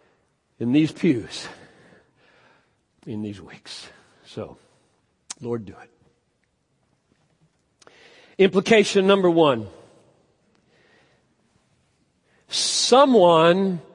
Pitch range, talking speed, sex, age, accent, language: 175-235 Hz, 60 wpm, male, 50-69, American, English